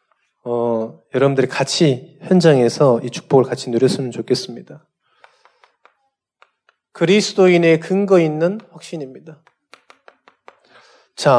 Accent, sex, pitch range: native, male, 140-195 Hz